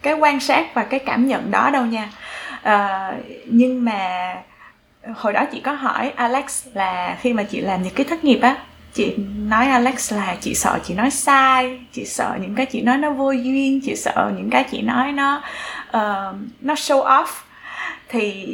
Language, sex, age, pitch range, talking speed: Vietnamese, female, 20-39, 215-265 Hz, 190 wpm